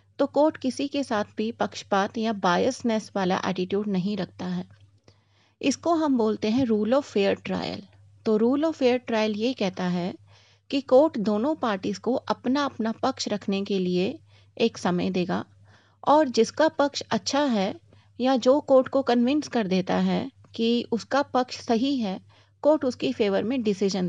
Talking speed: 165 wpm